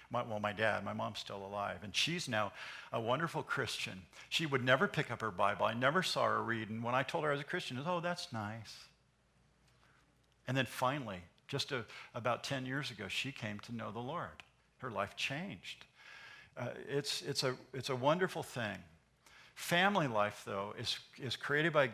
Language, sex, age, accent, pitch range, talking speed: English, male, 50-69, American, 120-155 Hz, 200 wpm